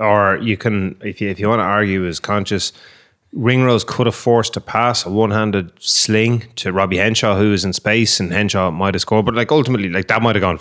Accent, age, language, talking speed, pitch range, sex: Irish, 20-39, English, 230 wpm, 95-110 Hz, male